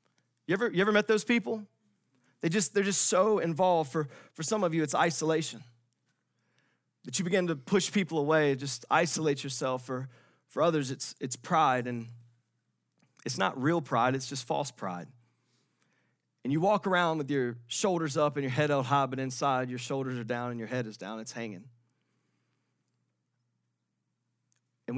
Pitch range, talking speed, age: 120-145 Hz, 170 wpm, 30-49